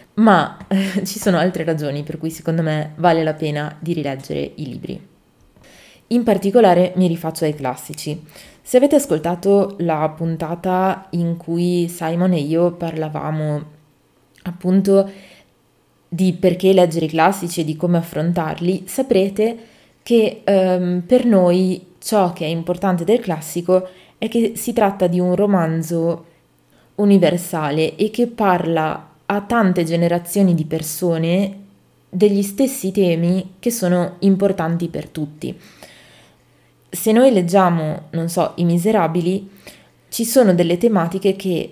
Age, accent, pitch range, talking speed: 20-39, native, 160-195 Hz, 130 wpm